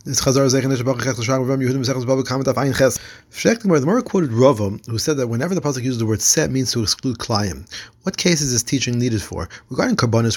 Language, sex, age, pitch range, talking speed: English, male, 30-49, 110-135 Hz, 155 wpm